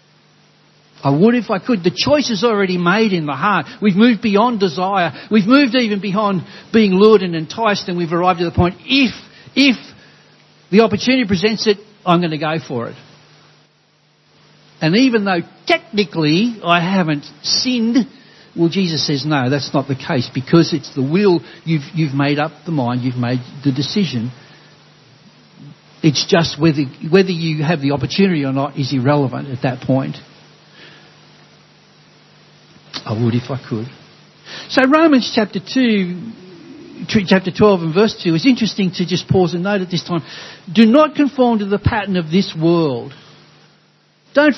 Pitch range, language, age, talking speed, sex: 155-215 Hz, English, 60-79, 165 wpm, male